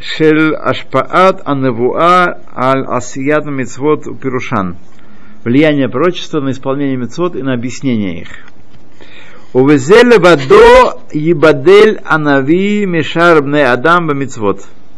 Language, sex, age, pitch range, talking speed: Russian, male, 50-69, 115-170 Hz, 65 wpm